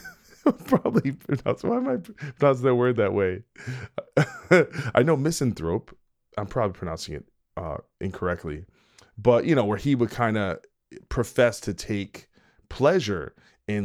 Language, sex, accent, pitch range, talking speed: English, male, American, 95-115 Hz, 140 wpm